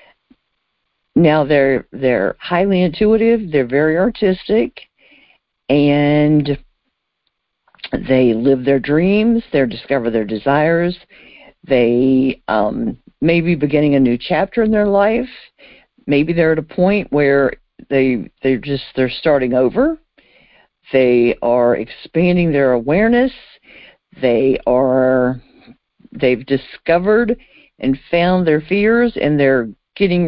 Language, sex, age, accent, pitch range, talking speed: English, female, 50-69, American, 135-205 Hz, 110 wpm